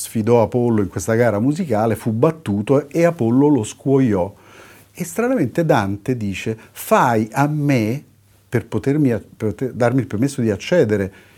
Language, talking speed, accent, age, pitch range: Italian, 140 wpm, native, 50-69, 105-145 Hz